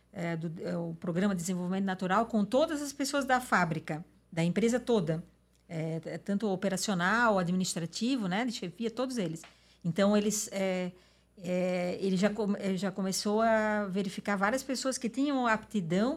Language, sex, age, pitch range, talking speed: Portuguese, female, 50-69, 185-230 Hz, 155 wpm